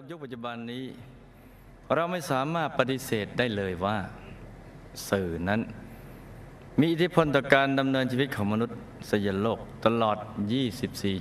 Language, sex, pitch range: Thai, male, 100-130 Hz